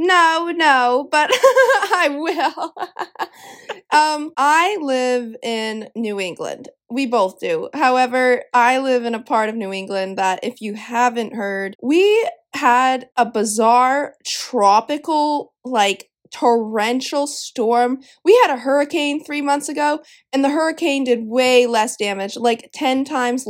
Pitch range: 215-270 Hz